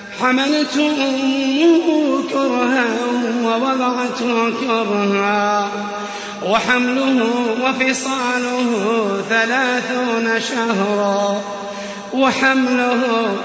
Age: 30-49